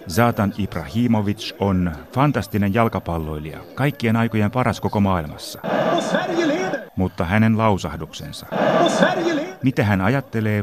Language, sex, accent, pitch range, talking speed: Finnish, male, native, 90-115 Hz, 90 wpm